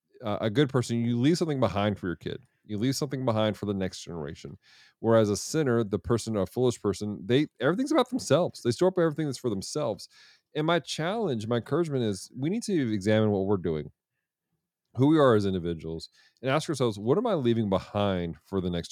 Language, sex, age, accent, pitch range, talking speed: English, male, 40-59, American, 95-125 Hz, 210 wpm